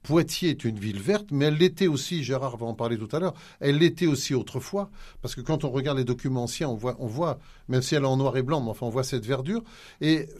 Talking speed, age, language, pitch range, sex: 270 wpm, 50-69, French, 125-175 Hz, male